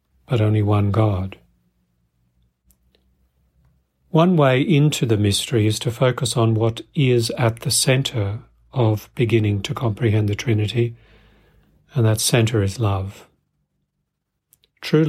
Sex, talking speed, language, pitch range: male, 120 wpm, English, 100-120 Hz